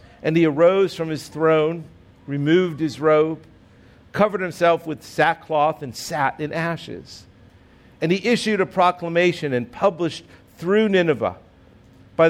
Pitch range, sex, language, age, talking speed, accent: 110-170 Hz, male, English, 50-69, 130 wpm, American